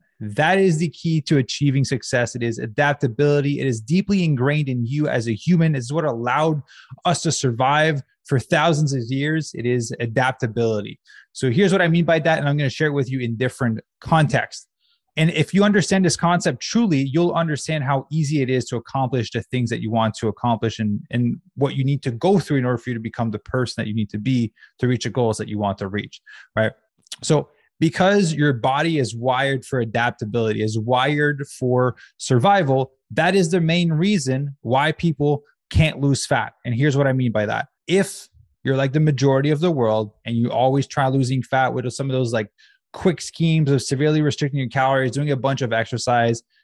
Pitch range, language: 125-160 Hz, English